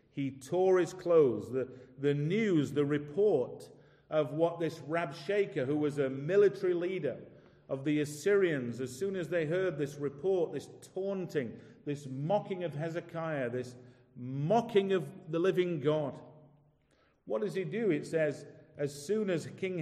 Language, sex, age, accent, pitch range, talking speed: English, male, 40-59, British, 140-180 Hz, 150 wpm